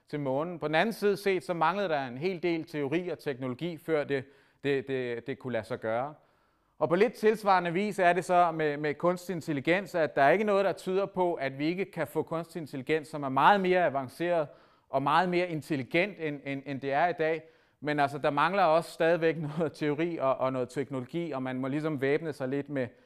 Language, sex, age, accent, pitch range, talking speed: Danish, male, 30-49, native, 140-170 Hz, 225 wpm